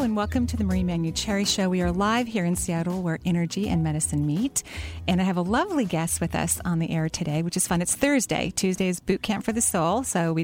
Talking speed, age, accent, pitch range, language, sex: 265 wpm, 40-59, American, 165-190 Hz, English, female